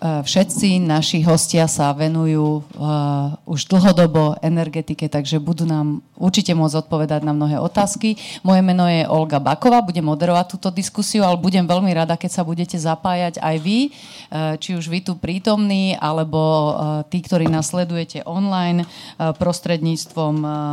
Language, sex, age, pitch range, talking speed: Slovak, female, 40-59, 155-185 Hz, 150 wpm